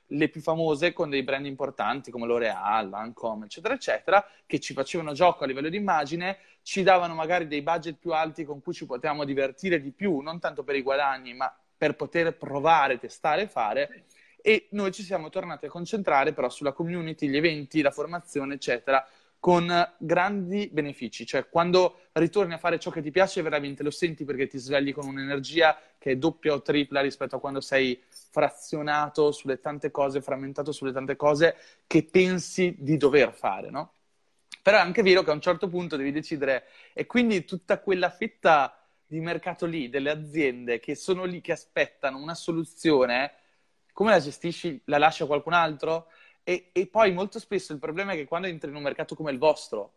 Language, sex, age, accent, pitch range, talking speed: Italian, male, 20-39, native, 140-180 Hz, 190 wpm